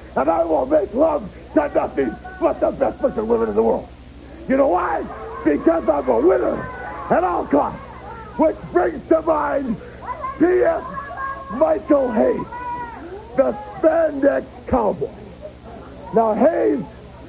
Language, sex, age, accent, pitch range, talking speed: English, male, 60-79, American, 220-330 Hz, 130 wpm